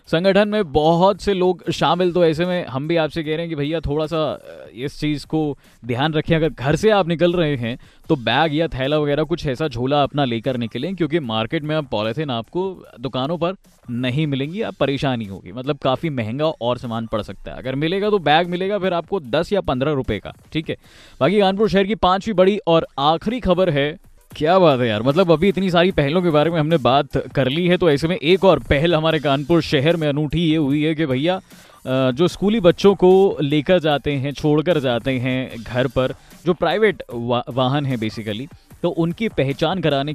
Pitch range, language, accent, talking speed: 130-175 Hz, Hindi, native, 215 wpm